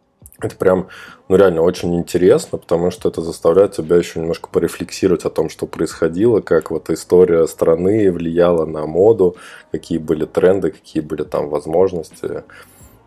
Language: Russian